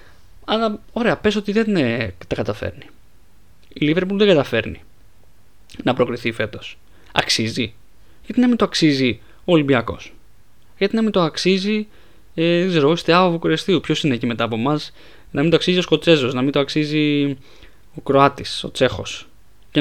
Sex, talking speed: male, 165 wpm